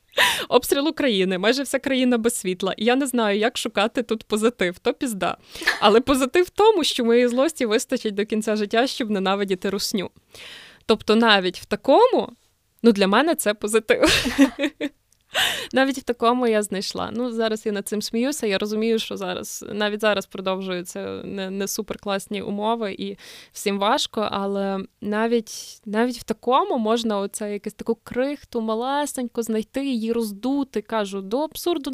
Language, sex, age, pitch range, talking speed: Ukrainian, female, 20-39, 210-255 Hz, 155 wpm